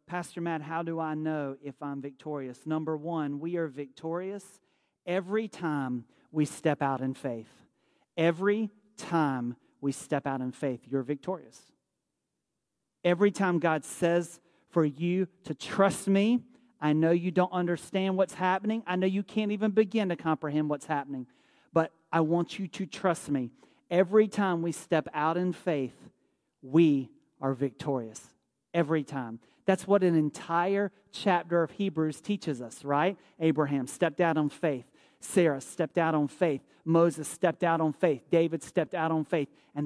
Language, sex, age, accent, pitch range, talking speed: English, male, 40-59, American, 145-180 Hz, 160 wpm